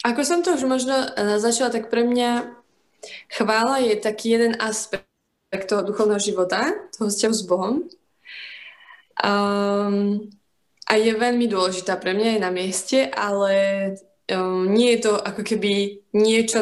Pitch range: 185-220 Hz